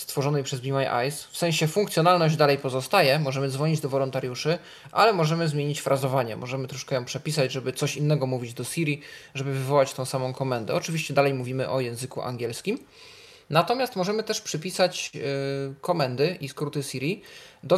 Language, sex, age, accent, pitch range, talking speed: Polish, male, 20-39, native, 130-165 Hz, 165 wpm